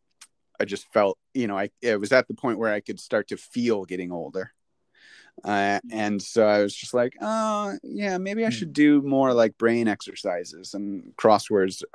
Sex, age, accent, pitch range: male, 30-49, American, 100-120 Hz